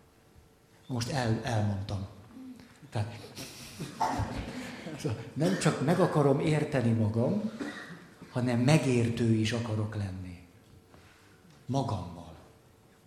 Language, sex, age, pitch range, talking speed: Hungarian, male, 60-79, 115-190 Hz, 65 wpm